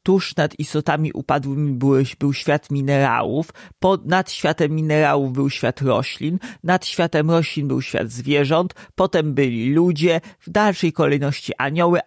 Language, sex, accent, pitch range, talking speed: Polish, male, native, 140-165 Hz, 130 wpm